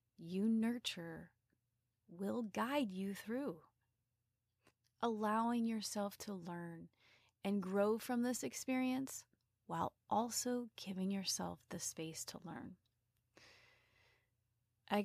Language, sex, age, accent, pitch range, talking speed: English, female, 30-49, American, 170-210 Hz, 95 wpm